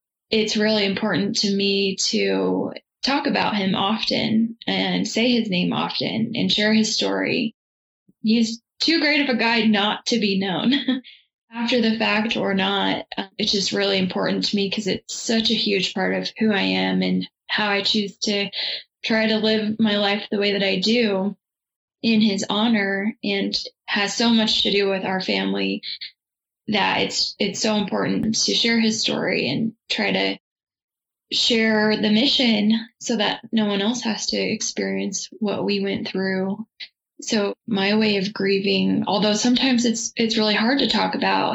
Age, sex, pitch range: 10-29, female, 195-230 Hz